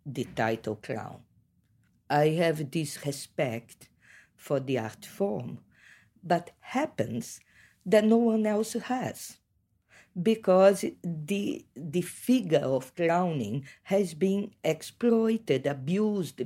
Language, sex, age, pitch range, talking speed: English, female, 50-69, 135-210 Hz, 100 wpm